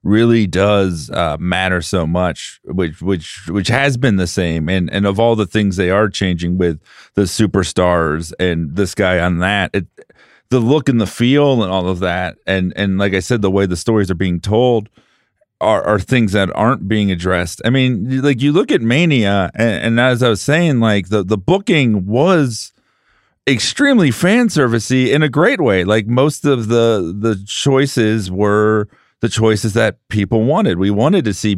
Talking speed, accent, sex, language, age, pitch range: 190 wpm, American, male, English, 40-59, 100-120 Hz